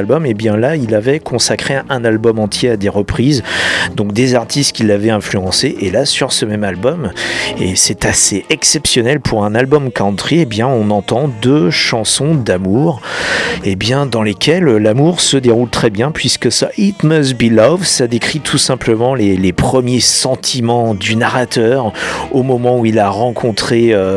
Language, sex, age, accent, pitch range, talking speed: French, male, 40-59, French, 105-135 Hz, 185 wpm